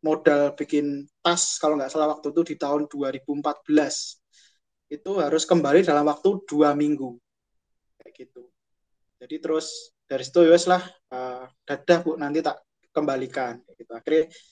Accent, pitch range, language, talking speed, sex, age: native, 145-165 Hz, Indonesian, 140 wpm, male, 20-39